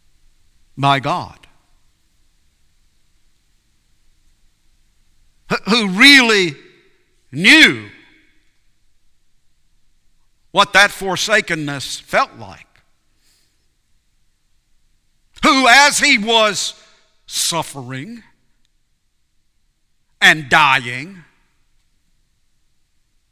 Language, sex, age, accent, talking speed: English, male, 50-69, American, 45 wpm